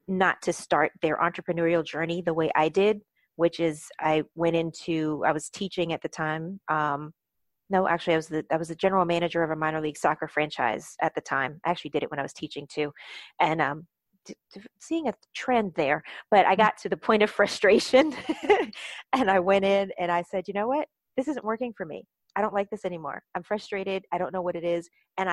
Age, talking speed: 30-49, 225 wpm